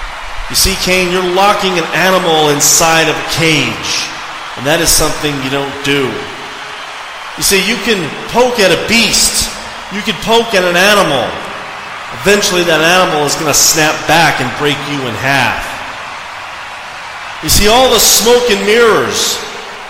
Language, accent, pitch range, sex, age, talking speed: English, American, 150-200 Hz, male, 30-49, 155 wpm